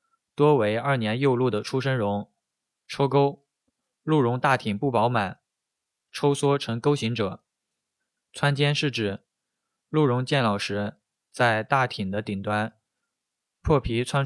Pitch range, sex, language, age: 110-140 Hz, male, Chinese, 20-39